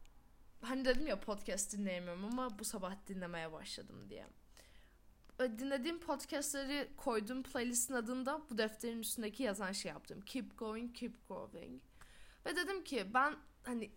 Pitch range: 195-275 Hz